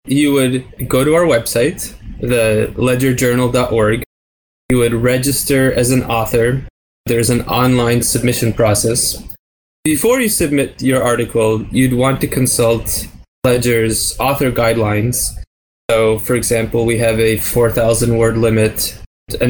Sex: male